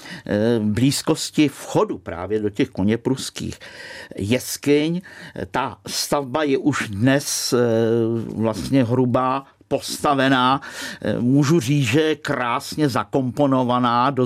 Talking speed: 95 wpm